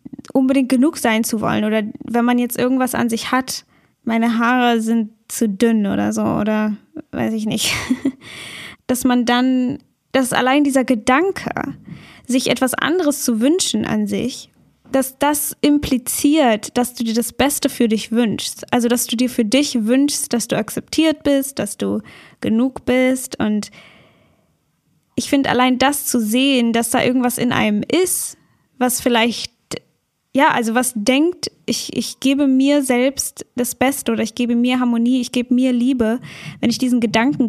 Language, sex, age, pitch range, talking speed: German, female, 10-29, 230-270 Hz, 165 wpm